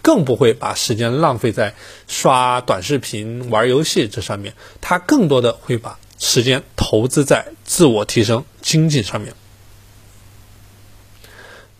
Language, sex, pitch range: Chinese, male, 105-145 Hz